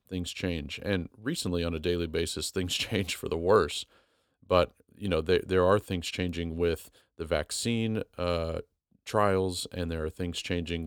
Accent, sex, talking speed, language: American, male, 170 wpm, English